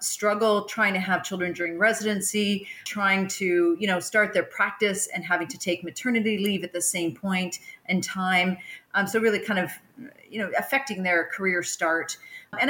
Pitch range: 175-220 Hz